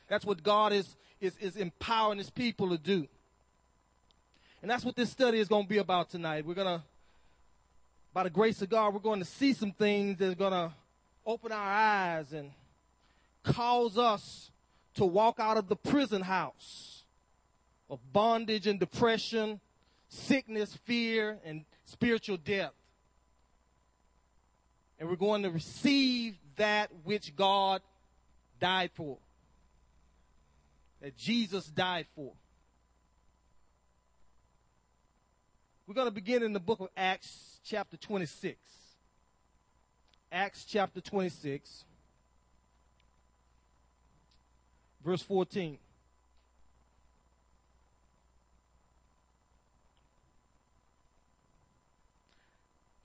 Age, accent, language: 30-49, American, English